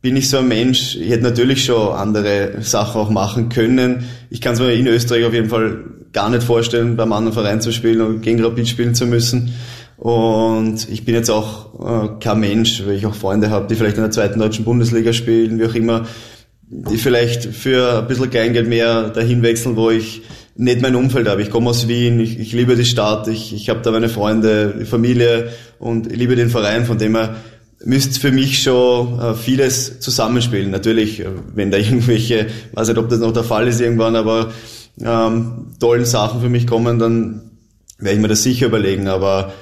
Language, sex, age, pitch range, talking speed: German, male, 20-39, 110-120 Hz, 205 wpm